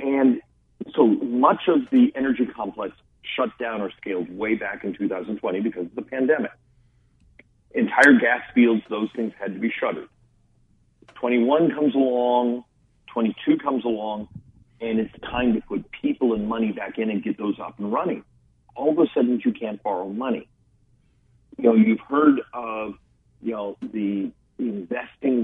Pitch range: 110-130 Hz